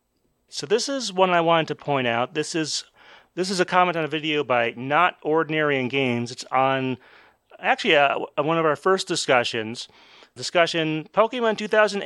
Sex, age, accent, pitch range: male, 30-49, American, 125-160 Hz